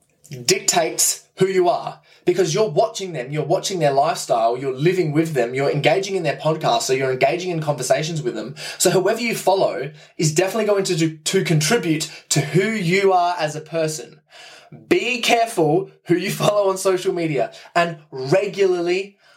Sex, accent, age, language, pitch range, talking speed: male, Australian, 20-39, English, 135-185 Hz, 175 wpm